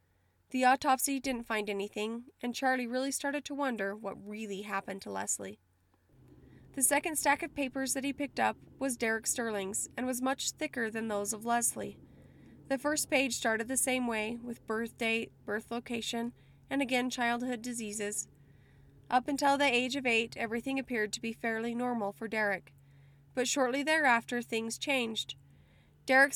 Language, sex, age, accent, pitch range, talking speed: English, female, 20-39, American, 205-260 Hz, 165 wpm